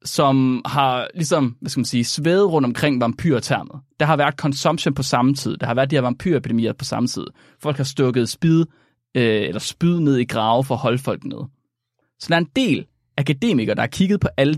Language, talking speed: Danish, 220 wpm